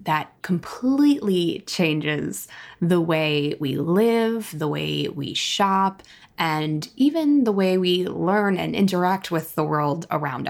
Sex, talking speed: female, 130 wpm